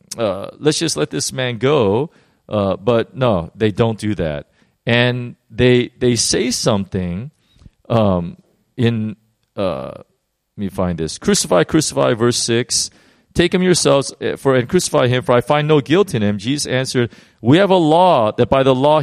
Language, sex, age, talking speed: English, male, 40-59, 170 wpm